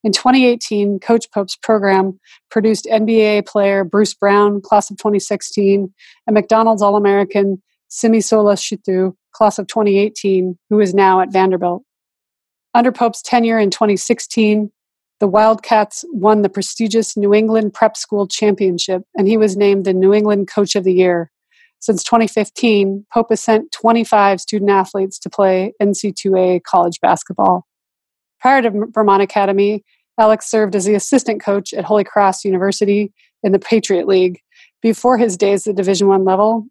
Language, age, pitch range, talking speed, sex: English, 30-49, 195-220 Hz, 145 wpm, female